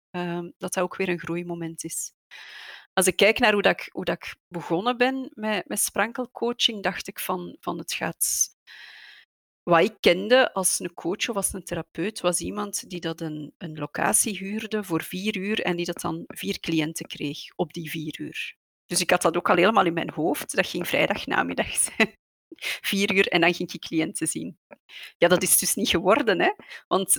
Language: Dutch